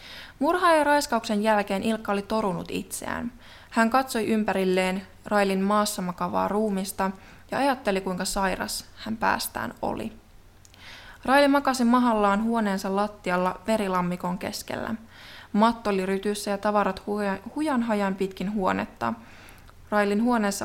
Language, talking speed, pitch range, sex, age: Finnish, 115 wpm, 185-230 Hz, female, 20-39